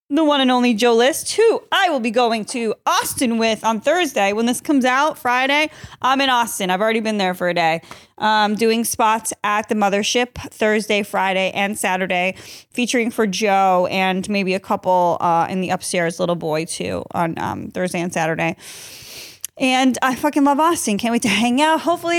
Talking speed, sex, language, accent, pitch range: 190 wpm, female, English, American, 190-260 Hz